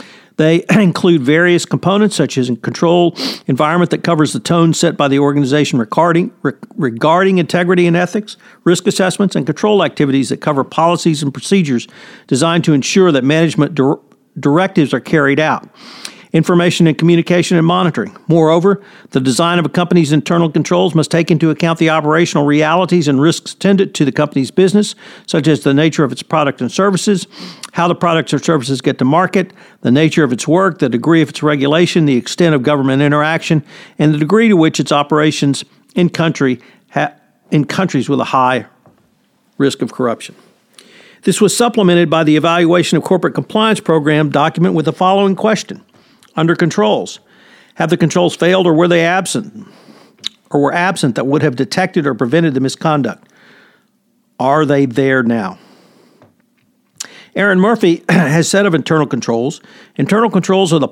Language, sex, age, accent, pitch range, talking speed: English, male, 50-69, American, 150-185 Hz, 165 wpm